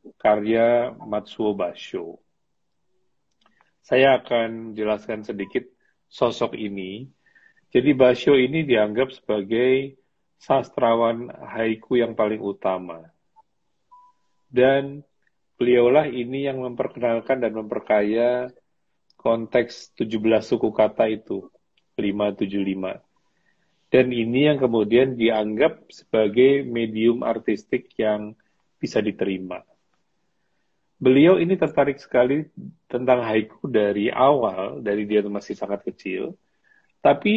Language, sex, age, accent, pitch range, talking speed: Indonesian, male, 40-59, native, 105-130 Hz, 90 wpm